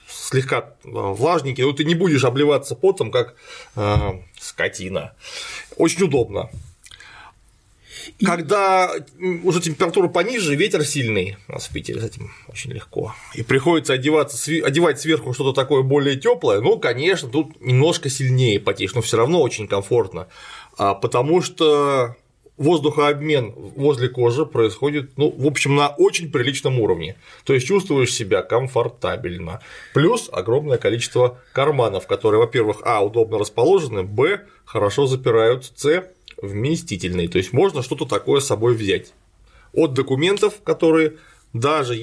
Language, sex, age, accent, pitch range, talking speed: Russian, male, 30-49, native, 125-175 Hz, 130 wpm